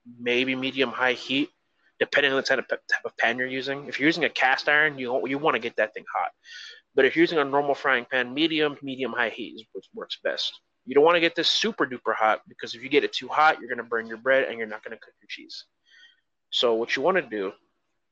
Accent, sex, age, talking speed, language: American, male, 20-39, 260 wpm, English